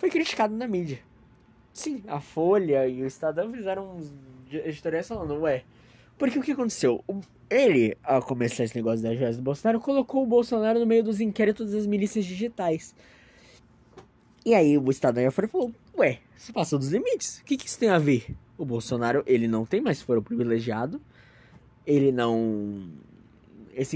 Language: Portuguese